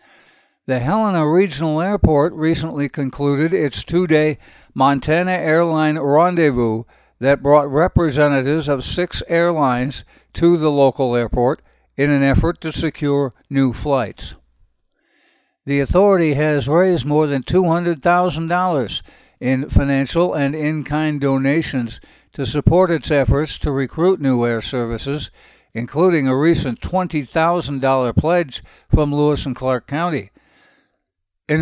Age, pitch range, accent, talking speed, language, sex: 60-79, 135-165 Hz, American, 115 wpm, English, male